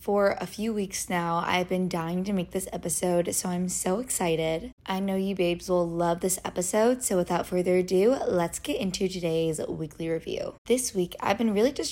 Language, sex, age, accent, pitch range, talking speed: English, female, 20-39, American, 170-195 Hz, 200 wpm